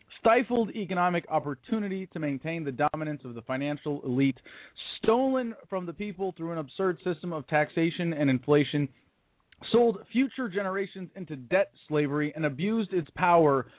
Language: English